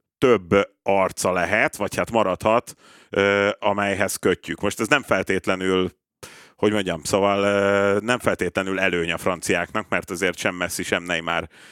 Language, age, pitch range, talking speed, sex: Hungarian, 30-49, 95-110 Hz, 145 wpm, male